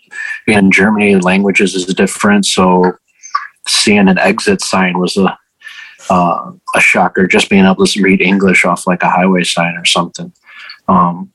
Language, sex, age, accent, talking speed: English, male, 20-39, American, 155 wpm